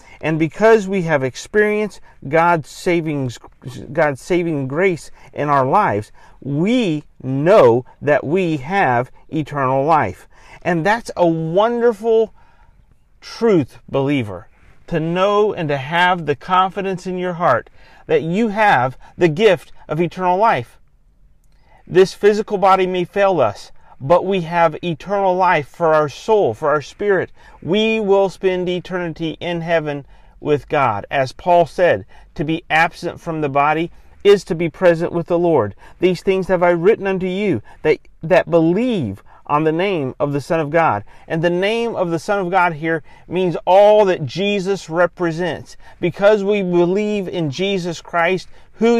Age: 50-69